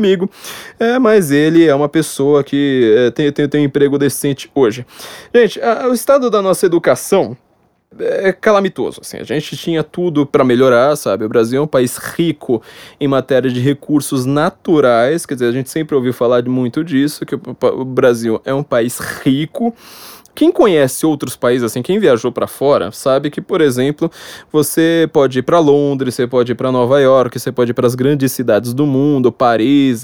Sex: male